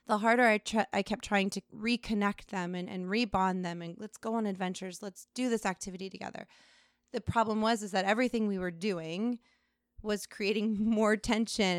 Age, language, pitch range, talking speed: 30-49, English, 190-220 Hz, 185 wpm